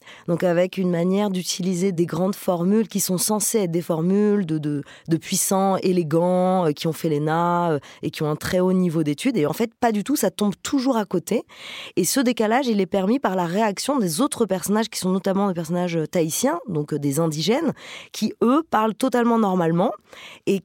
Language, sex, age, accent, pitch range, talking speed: French, female, 20-39, French, 175-215 Hz, 205 wpm